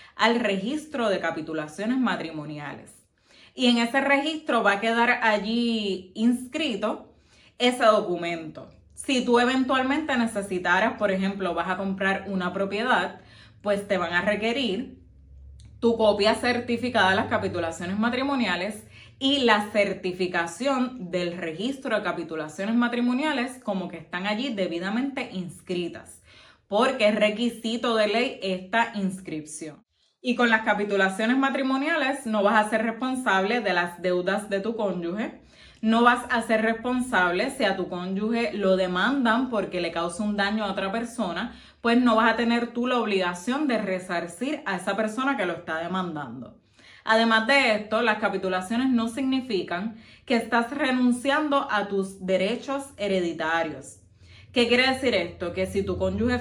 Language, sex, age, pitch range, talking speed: Spanish, female, 20-39, 185-245 Hz, 145 wpm